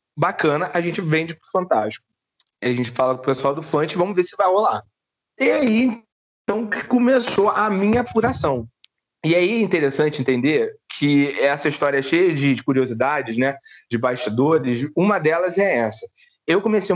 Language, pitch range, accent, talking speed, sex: Portuguese, 140-200 Hz, Brazilian, 175 wpm, male